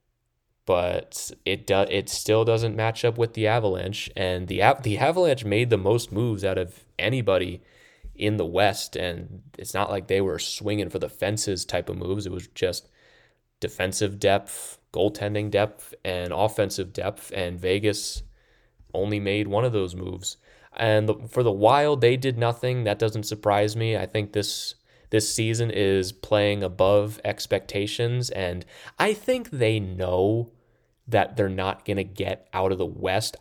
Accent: American